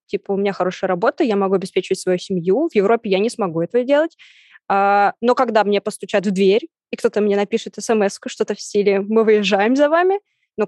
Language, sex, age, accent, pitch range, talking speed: Russian, female, 20-39, native, 200-245 Hz, 200 wpm